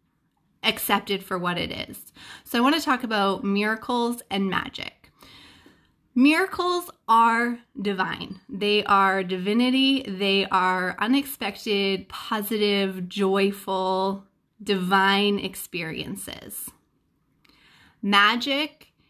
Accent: American